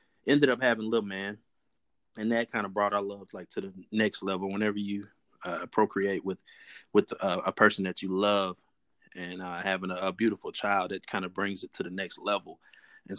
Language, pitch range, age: English, 95-110 Hz, 20-39